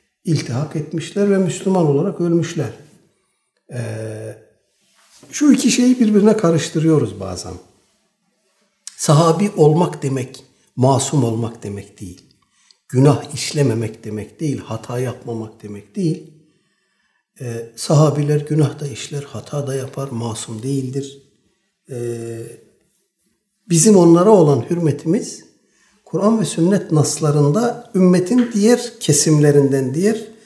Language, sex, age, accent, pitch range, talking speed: Turkish, male, 60-79, native, 135-180 Hz, 100 wpm